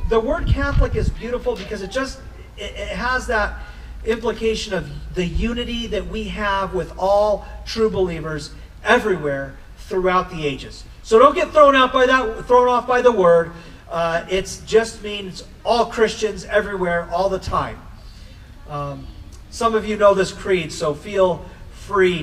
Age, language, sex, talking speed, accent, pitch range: 40-59, English, male, 155 wpm, American, 135-185 Hz